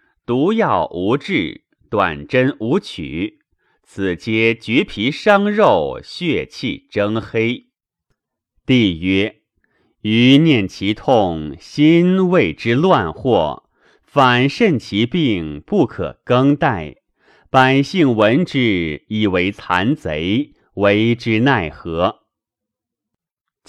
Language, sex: Chinese, male